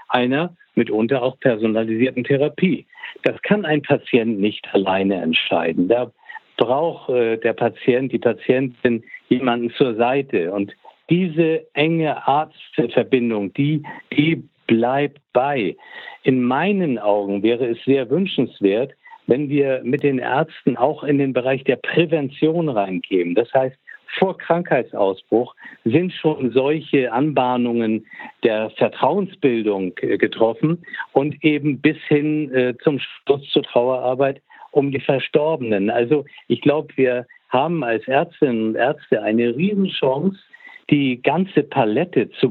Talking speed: 120 wpm